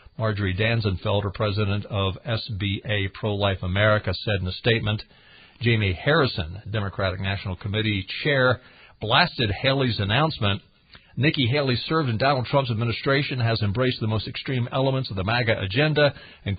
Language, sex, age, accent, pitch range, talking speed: English, male, 50-69, American, 100-130 Hz, 140 wpm